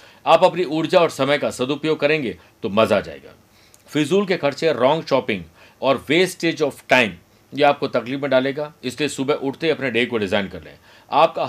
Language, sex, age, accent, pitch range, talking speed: Hindi, male, 50-69, native, 115-150 Hz, 190 wpm